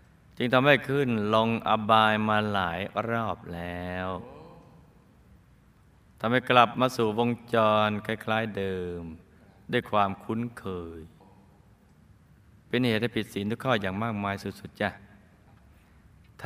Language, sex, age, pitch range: Thai, male, 20-39, 90-115 Hz